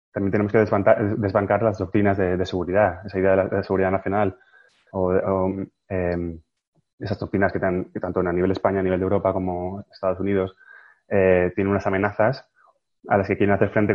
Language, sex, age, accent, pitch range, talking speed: Spanish, male, 20-39, Spanish, 95-105 Hz, 200 wpm